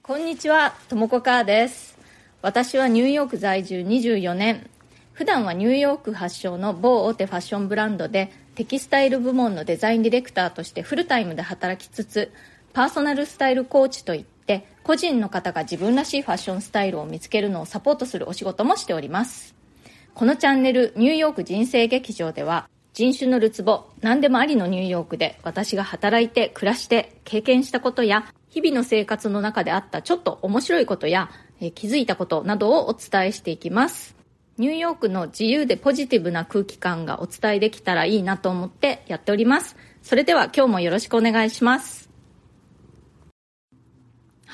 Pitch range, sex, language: 195-260 Hz, female, Japanese